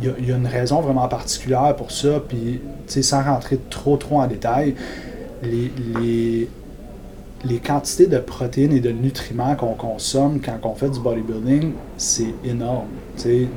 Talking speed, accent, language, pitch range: 155 wpm, Canadian, French, 120-135 Hz